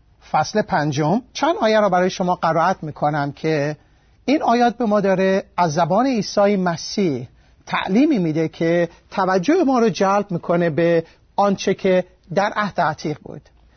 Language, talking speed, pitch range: Persian, 150 wpm, 155-210 Hz